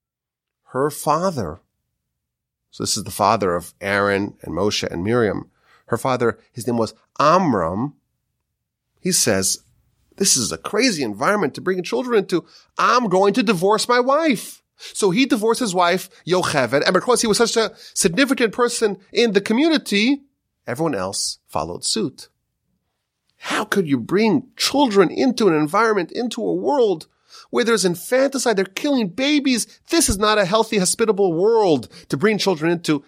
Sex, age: male, 30-49